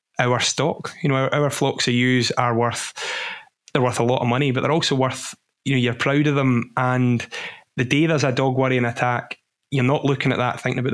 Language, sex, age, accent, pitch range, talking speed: English, male, 20-39, British, 120-140 Hz, 230 wpm